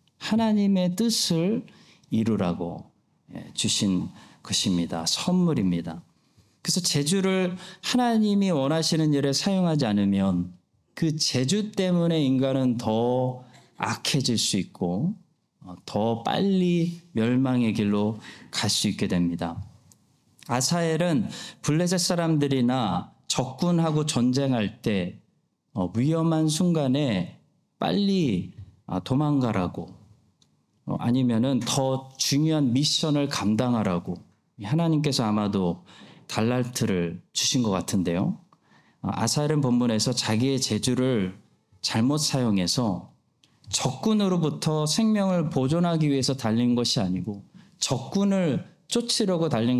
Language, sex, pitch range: Korean, male, 110-170 Hz